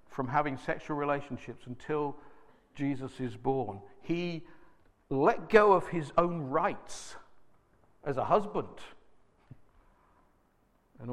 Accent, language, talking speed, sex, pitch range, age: British, English, 100 wpm, male, 125-195 Hz, 50-69